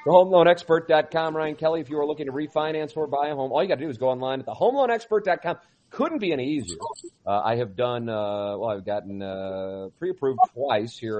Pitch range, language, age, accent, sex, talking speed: 110-155 Hz, English, 40-59, American, male, 215 wpm